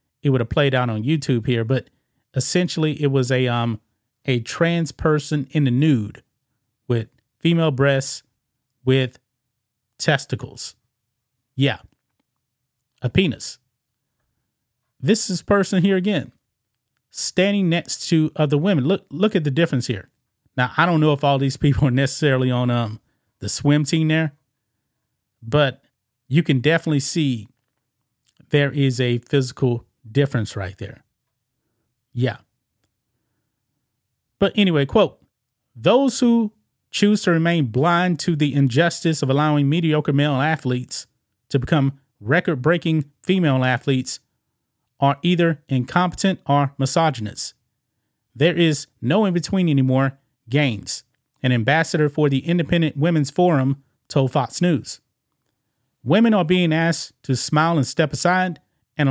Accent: American